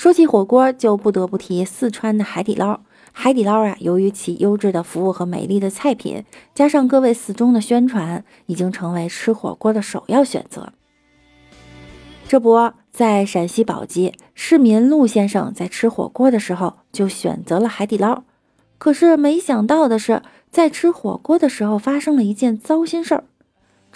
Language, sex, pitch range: Chinese, female, 190-255 Hz